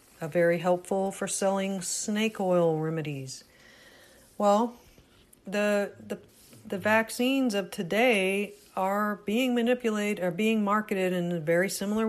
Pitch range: 175-225 Hz